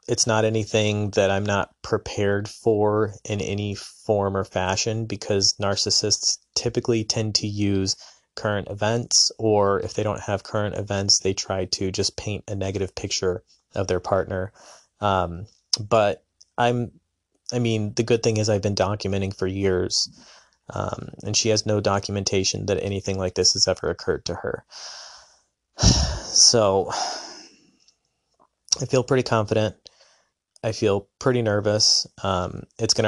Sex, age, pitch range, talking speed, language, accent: male, 20-39, 95-110 Hz, 145 wpm, English, American